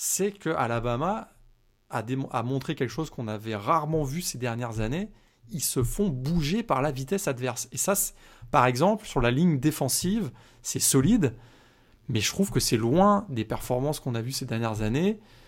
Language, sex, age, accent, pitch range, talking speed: French, male, 20-39, French, 120-160 Hz, 175 wpm